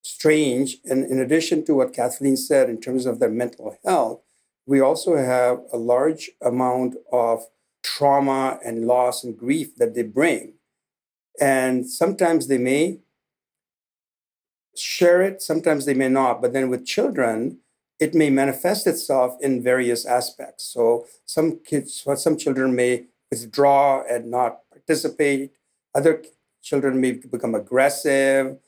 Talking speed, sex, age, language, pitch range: 140 wpm, male, 50-69, English, 125-160 Hz